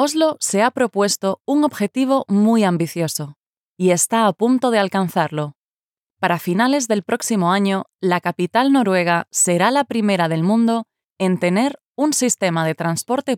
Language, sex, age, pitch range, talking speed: Spanish, female, 20-39, 175-235 Hz, 150 wpm